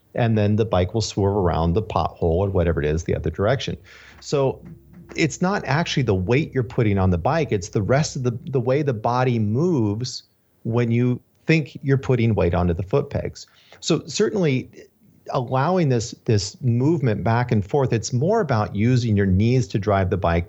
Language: English